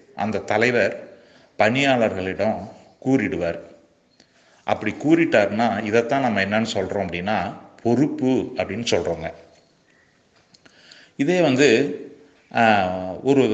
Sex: male